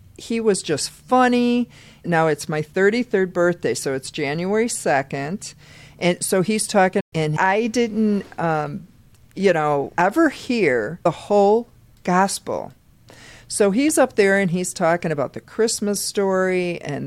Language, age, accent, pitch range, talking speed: English, 50-69, American, 140-190 Hz, 140 wpm